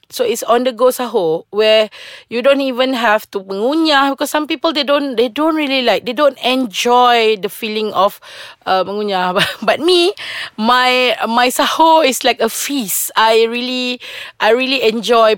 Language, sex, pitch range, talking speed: English, female, 195-275 Hz, 170 wpm